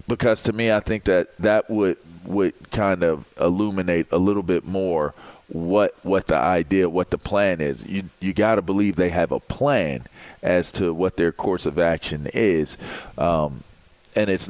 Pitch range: 85-100 Hz